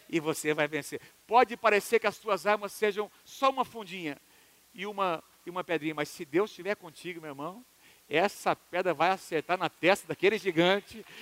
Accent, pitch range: Brazilian, 150-225 Hz